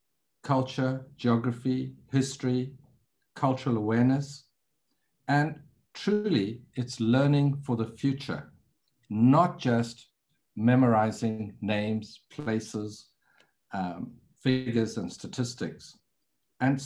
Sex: male